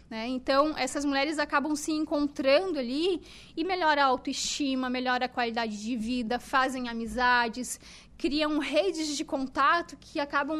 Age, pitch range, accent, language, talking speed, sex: 10-29, 245-290 Hz, Brazilian, Portuguese, 140 wpm, female